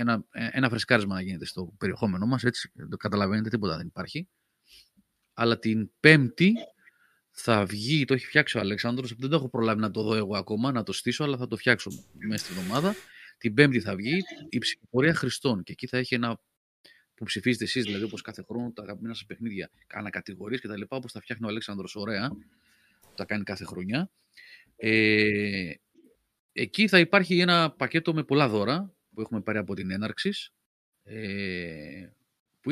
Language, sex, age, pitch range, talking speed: Greek, male, 30-49, 105-140 Hz, 180 wpm